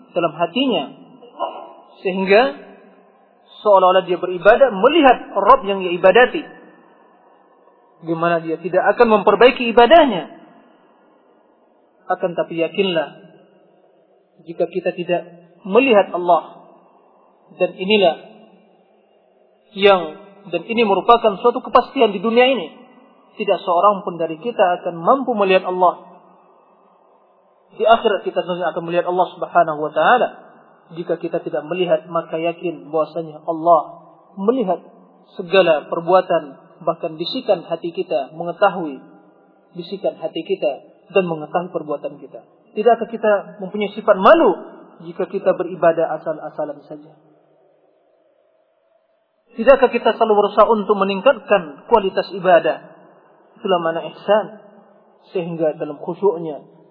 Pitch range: 170-220 Hz